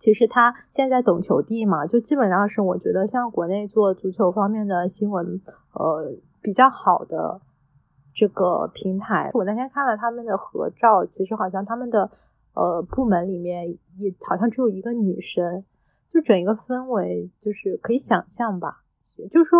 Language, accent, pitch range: Chinese, native, 190-240 Hz